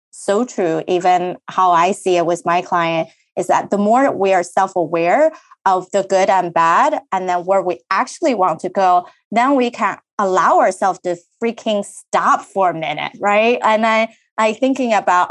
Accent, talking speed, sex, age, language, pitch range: American, 185 wpm, female, 30-49, English, 180-235 Hz